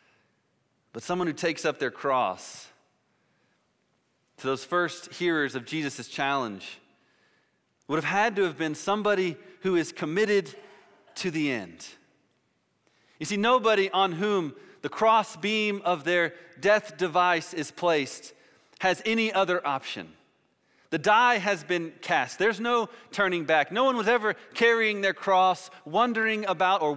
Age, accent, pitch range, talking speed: 30-49, American, 170-205 Hz, 140 wpm